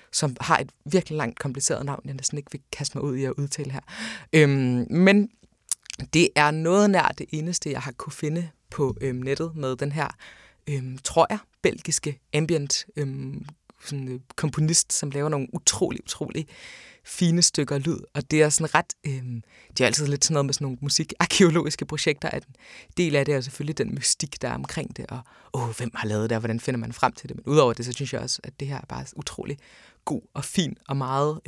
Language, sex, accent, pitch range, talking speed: Danish, female, native, 135-160 Hz, 215 wpm